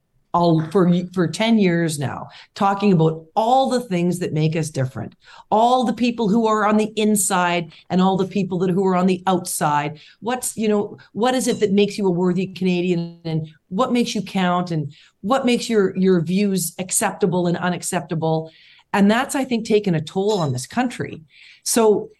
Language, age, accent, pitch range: English, 40-59, American, 155-210 Hz